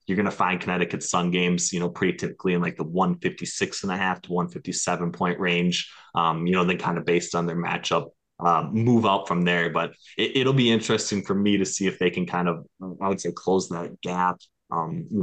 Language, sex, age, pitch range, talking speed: English, male, 20-39, 85-105 Hz, 230 wpm